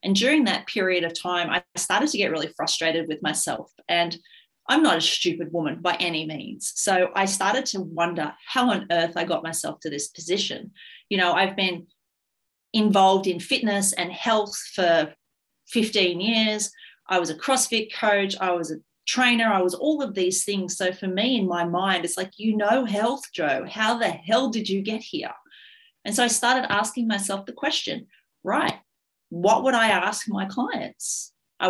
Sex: female